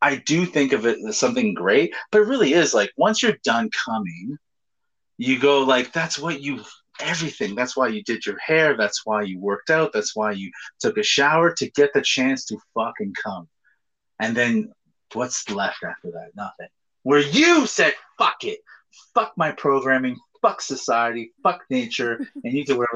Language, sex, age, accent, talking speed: English, male, 30-49, American, 185 wpm